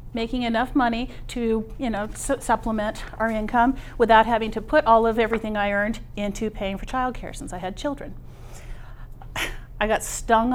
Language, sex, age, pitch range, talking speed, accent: English, female, 40-59, 210-255 Hz, 170 wpm, American